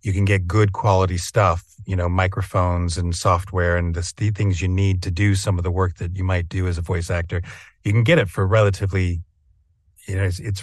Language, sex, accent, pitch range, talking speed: English, male, American, 90-105 Hz, 225 wpm